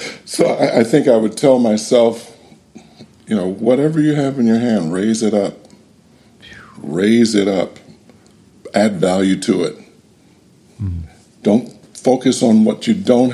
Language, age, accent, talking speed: English, 60-79, American, 145 wpm